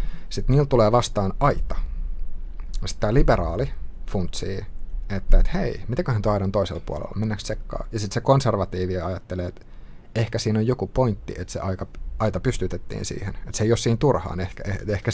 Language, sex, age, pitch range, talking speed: Finnish, male, 30-49, 95-110 Hz, 180 wpm